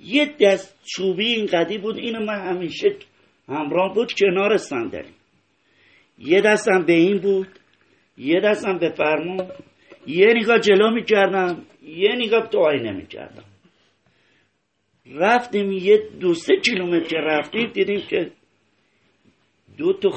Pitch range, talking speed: 155-220 Hz, 115 wpm